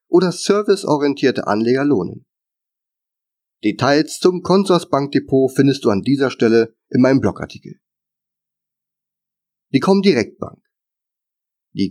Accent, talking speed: German, 100 wpm